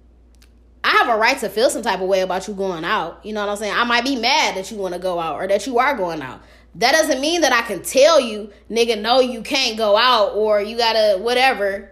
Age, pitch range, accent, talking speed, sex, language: 20-39, 210-290 Hz, American, 270 wpm, female, English